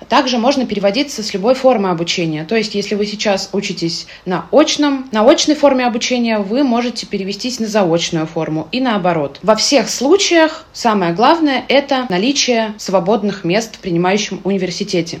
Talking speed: 155 wpm